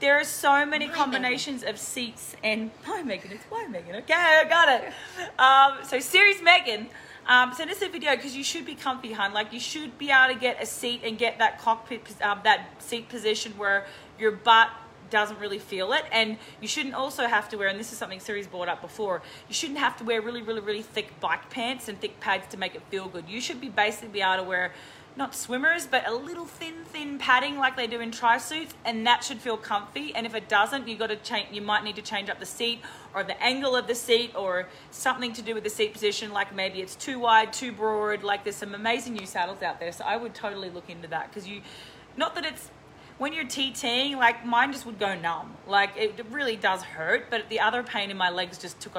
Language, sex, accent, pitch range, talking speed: English, female, Australian, 205-260 Hz, 240 wpm